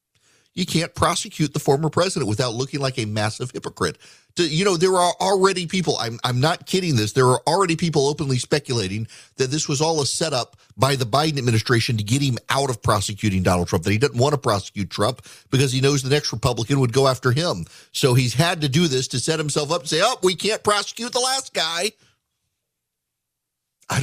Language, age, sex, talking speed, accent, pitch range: English, 40-59, male, 210 wpm, American, 95-135 Hz